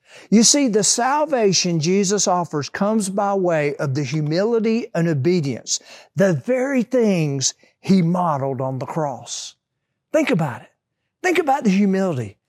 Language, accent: English, American